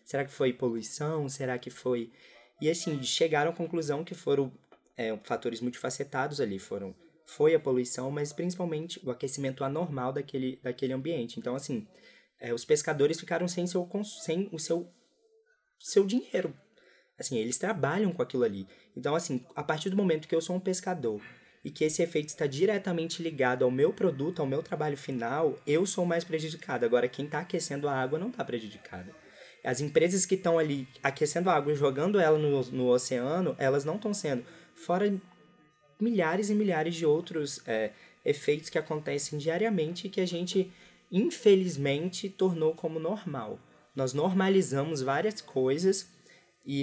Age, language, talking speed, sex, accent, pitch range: 20-39, Portuguese, 160 wpm, male, Brazilian, 140-180 Hz